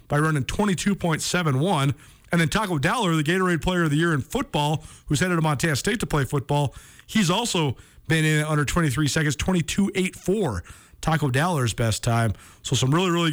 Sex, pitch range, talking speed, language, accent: male, 120-170 Hz, 175 wpm, English, American